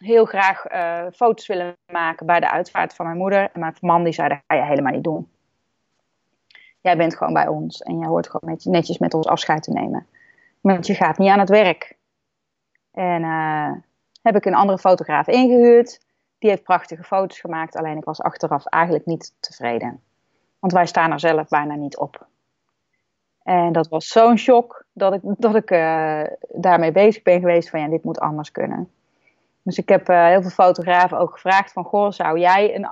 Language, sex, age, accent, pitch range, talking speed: Dutch, female, 30-49, Dutch, 165-195 Hz, 195 wpm